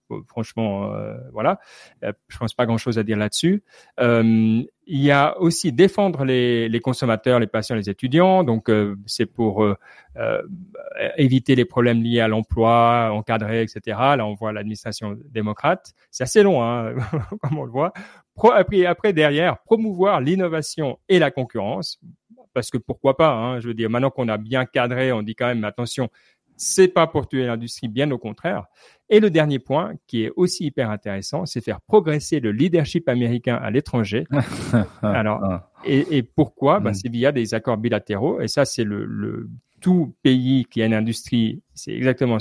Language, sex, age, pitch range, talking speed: French, male, 30-49, 110-145 Hz, 180 wpm